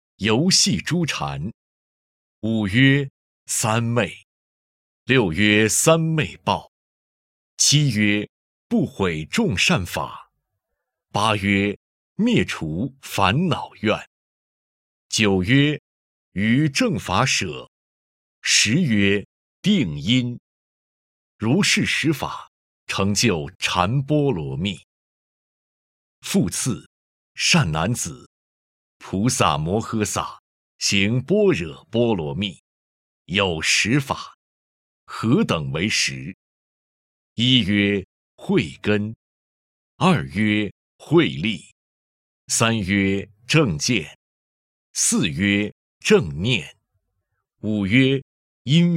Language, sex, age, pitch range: Chinese, male, 50-69, 90-130 Hz